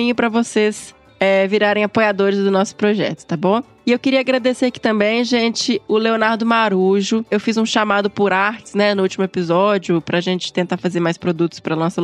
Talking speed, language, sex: 190 wpm, Portuguese, female